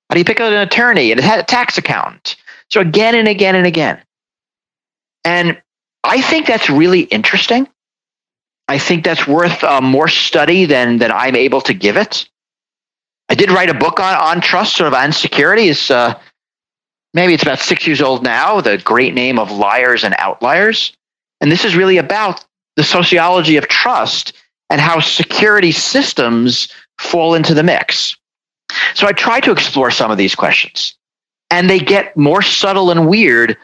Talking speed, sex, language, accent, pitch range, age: 180 wpm, male, English, American, 155-210 Hz, 40-59